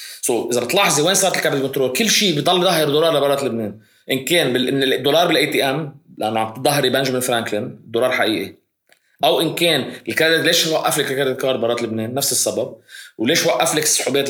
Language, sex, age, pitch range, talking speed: Arabic, male, 20-39, 120-160 Hz, 185 wpm